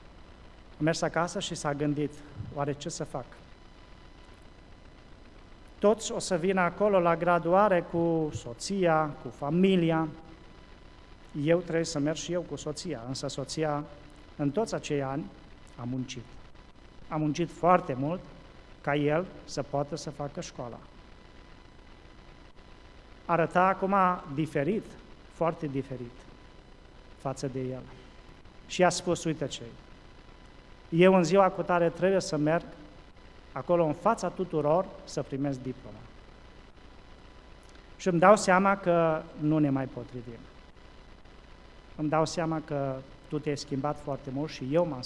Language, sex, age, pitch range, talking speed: Romanian, male, 40-59, 120-170 Hz, 130 wpm